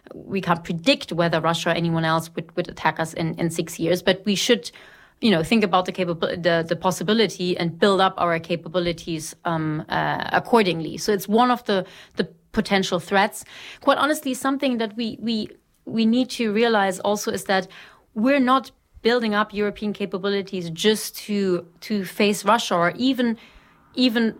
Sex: female